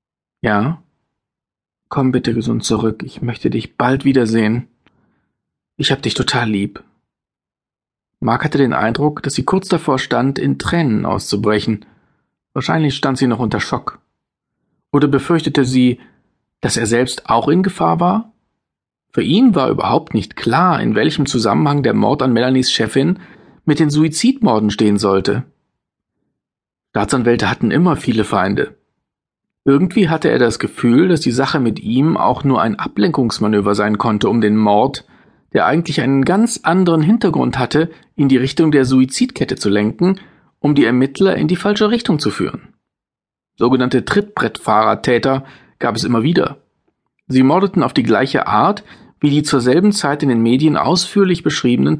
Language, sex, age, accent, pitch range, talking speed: German, male, 40-59, German, 115-160 Hz, 150 wpm